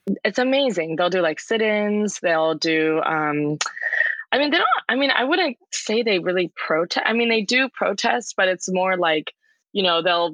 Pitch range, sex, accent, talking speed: 160-195 Hz, female, American, 190 wpm